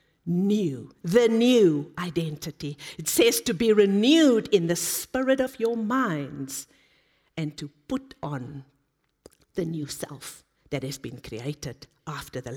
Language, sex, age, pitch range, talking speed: English, female, 50-69, 155-225 Hz, 135 wpm